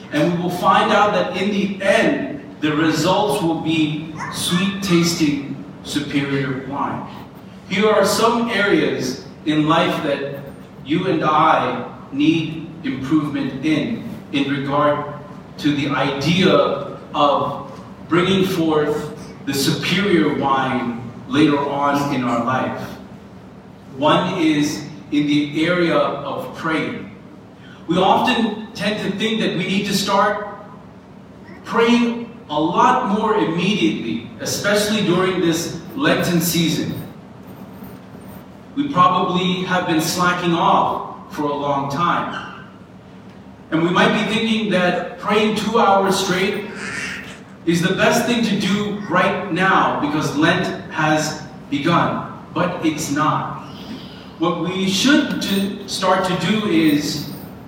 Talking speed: 120 wpm